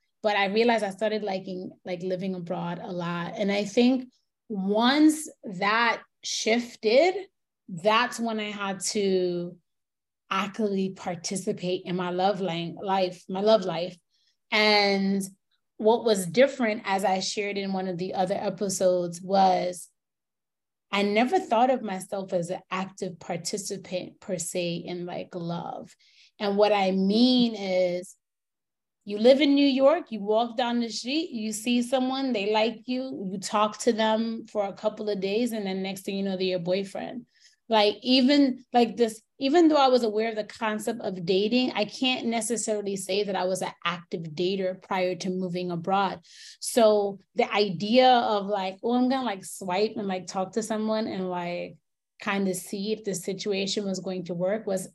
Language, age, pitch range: English, 20-39, 185-225 Hz